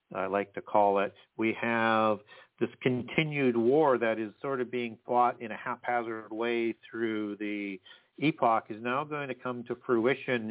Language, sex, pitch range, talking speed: English, male, 105-125 Hz, 170 wpm